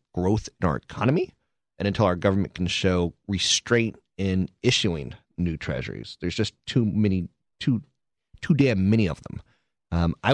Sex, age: male, 30-49